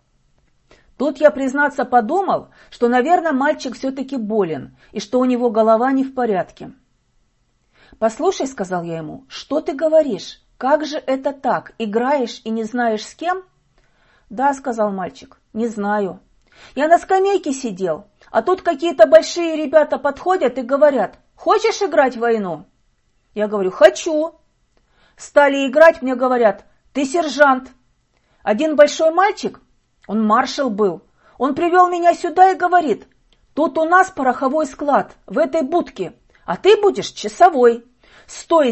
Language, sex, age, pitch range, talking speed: Russian, female, 40-59, 225-320 Hz, 140 wpm